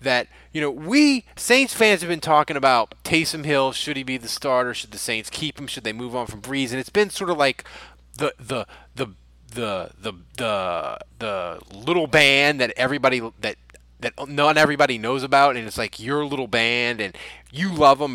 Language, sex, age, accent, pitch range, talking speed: English, male, 20-39, American, 120-170 Hz, 200 wpm